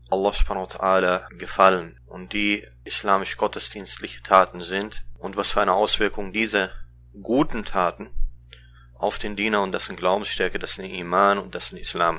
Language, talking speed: German, 145 wpm